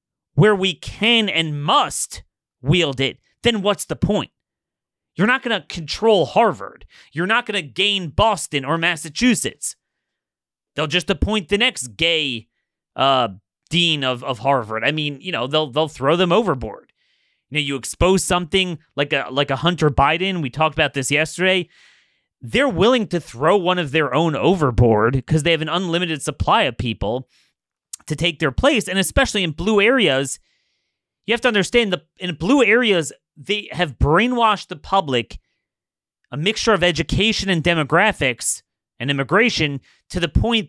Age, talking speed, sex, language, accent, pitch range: 30-49, 160 wpm, male, English, American, 150-205 Hz